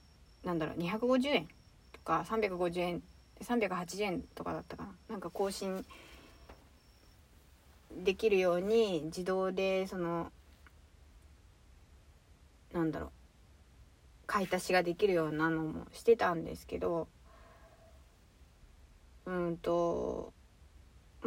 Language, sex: Japanese, female